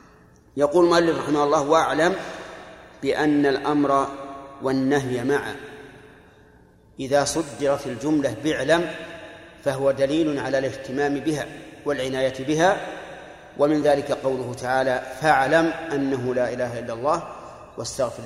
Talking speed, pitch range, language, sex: 100 wpm, 135-160 Hz, Arabic, male